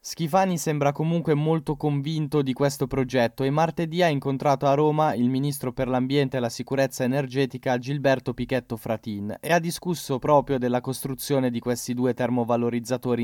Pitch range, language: 125-150 Hz, Italian